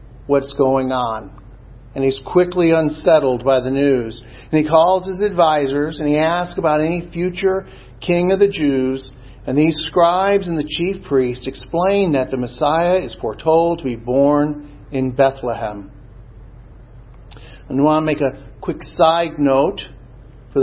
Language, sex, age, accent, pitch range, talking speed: English, male, 50-69, American, 120-150 Hz, 155 wpm